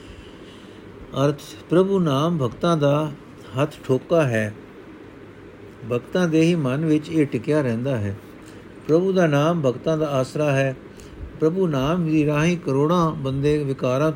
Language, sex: Punjabi, male